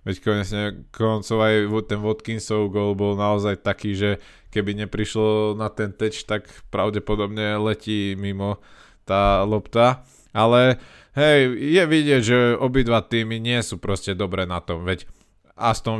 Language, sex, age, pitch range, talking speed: Slovak, male, 20-39, 100-115 Hz, 140 wpm